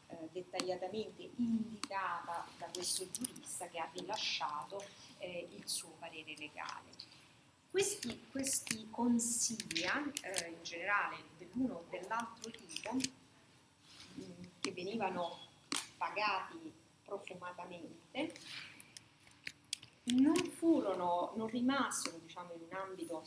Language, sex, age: Italian, female, 30-49